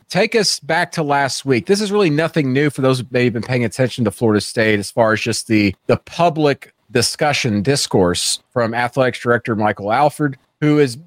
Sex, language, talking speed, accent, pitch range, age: male, English, 205 wpm, American, 110-150 Hz, 40-59